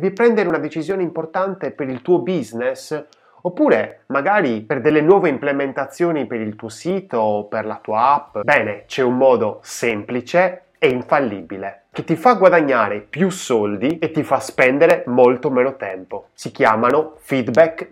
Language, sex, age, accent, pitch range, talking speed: Italian, male, 20-39, native, 115-195 Hz, 155 wpm